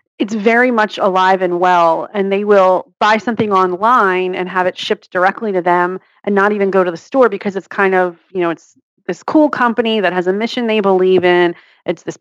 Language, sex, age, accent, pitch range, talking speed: English, female, 30-49, American, 180-215 Hz, 220 wpm